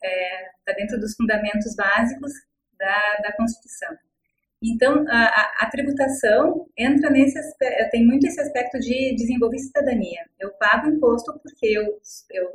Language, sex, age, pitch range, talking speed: English, female, 30-49, 210-265 Hz, 135 wpm